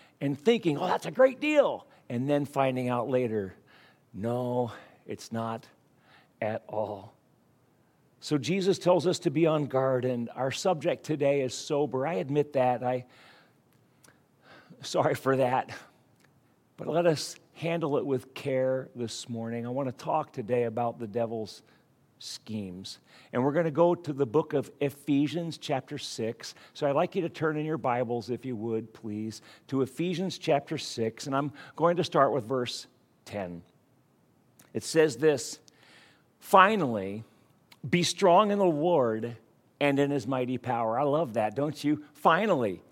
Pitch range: 125-160 Hz